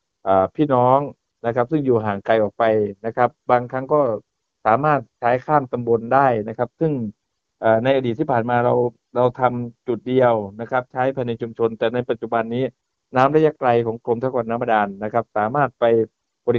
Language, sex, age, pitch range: Thai, male, 60-79, 115-130 Hz